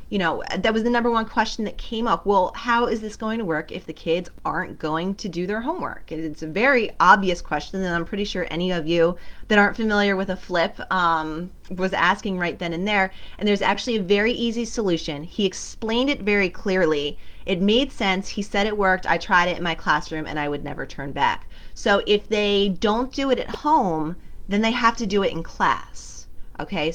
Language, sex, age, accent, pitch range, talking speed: English, female, 30-49, American, 170-210 Hz, 225 wpm